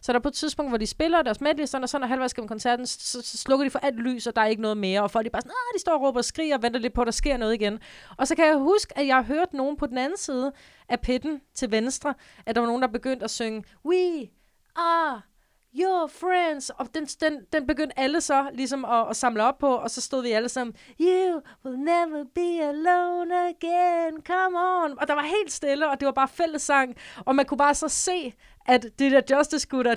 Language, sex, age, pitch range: Danish, female, 30-49, 200-285 Hz